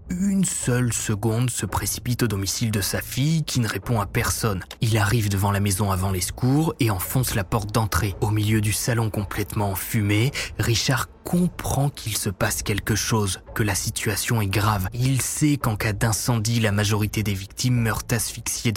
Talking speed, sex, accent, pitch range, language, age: 180 wpm, male, French, 105-130 Hz, French, 20-39